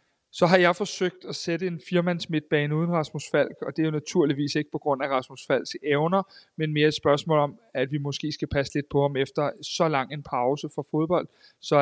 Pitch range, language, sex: 140-160 Hz, Danish, male